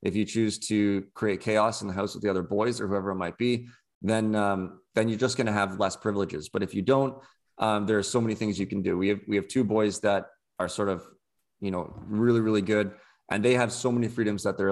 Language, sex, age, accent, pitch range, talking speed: English, male, 20-39, American, 95-120 Hz, 260 wpm